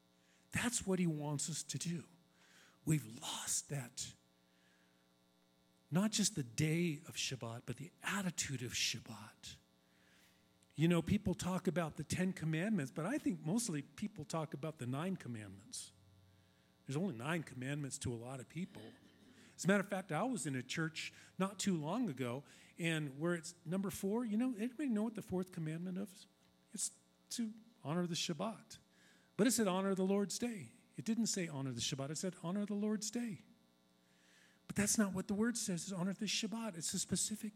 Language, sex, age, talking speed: English, male, 40-59, 180 wpm